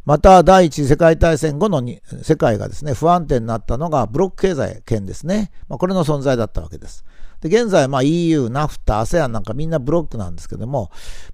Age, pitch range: 50-69, 120-190 Hz